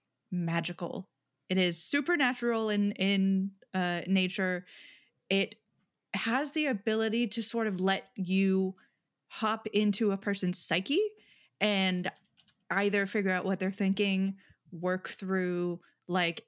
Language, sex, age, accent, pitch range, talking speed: English, female, 30-49, American, 185-230 Hz, 115 wpm